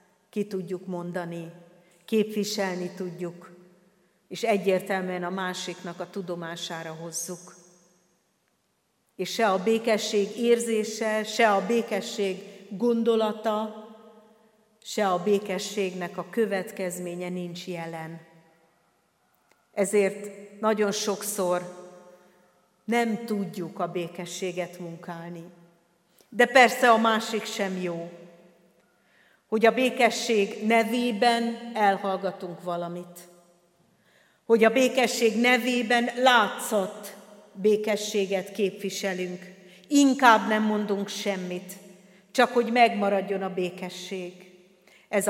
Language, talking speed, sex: Hungarian, 85 wpm, female